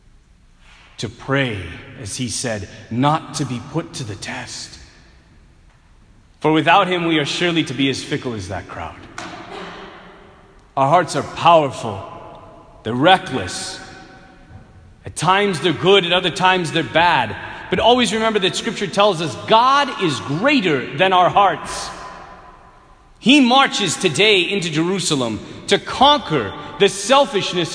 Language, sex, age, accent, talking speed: English, male, 30-49, American, 135 wpm